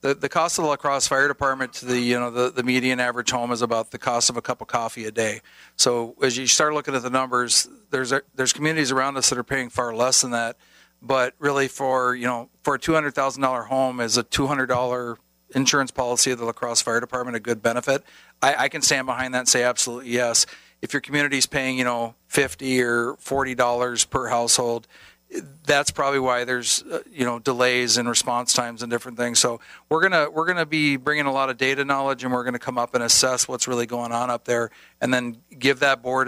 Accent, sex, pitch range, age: American, male, 120-135 Hz, 40-59